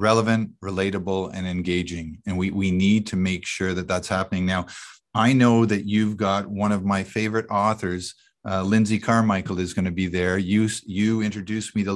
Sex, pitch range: male, 100-125 Hz